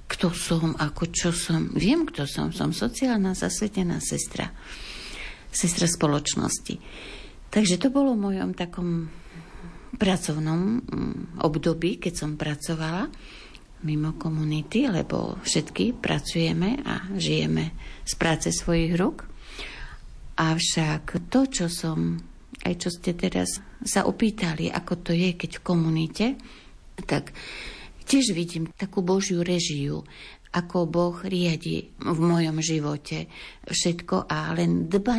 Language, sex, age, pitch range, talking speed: Slovak, female, 60-79, 150-185 Hz, 115 wpm